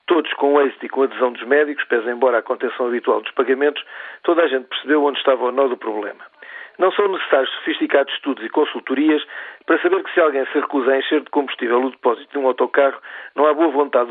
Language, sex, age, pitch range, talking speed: Portuguese, male, 50-69, 130-170 Hz, 230 wpm